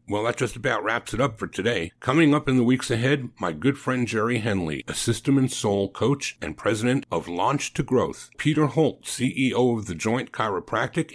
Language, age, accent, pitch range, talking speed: English, 50-69, American, 90-130 Hz, 200 wpm